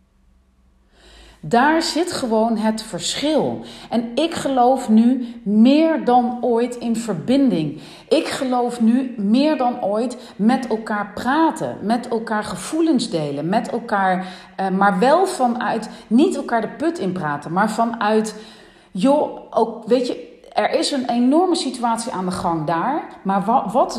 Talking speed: 140 wpm